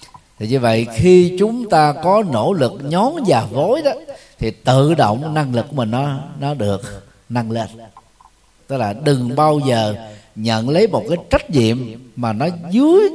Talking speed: 180 wpm